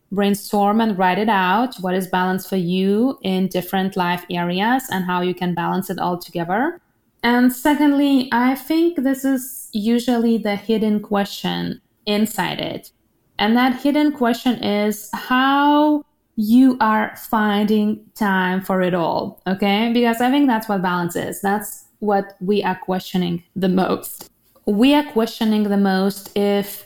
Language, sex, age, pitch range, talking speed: English, female, 20-39, 190-250 Hz, 150 wpm